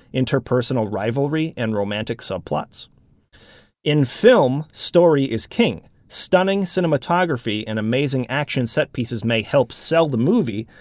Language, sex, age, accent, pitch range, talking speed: English, male, 30-49, American, 110-150 Hz, 120 wpm